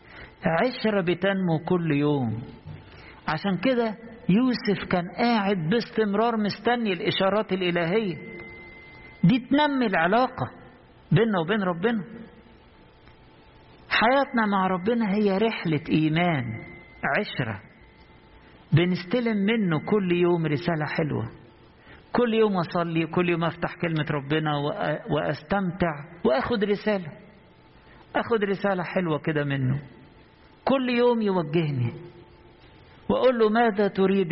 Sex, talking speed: male, 95 wpm